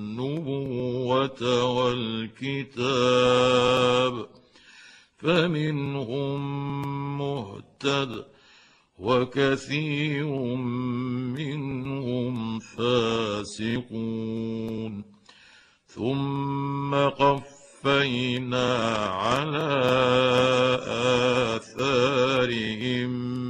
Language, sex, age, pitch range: Arabic, male, 50-69, 115-135 Hz